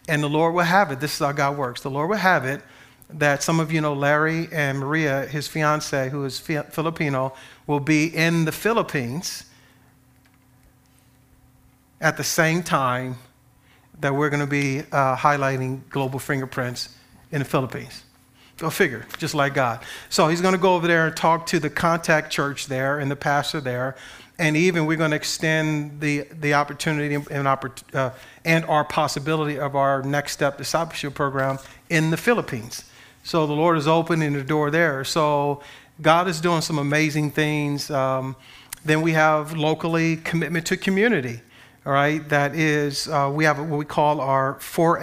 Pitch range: 135-160 Hz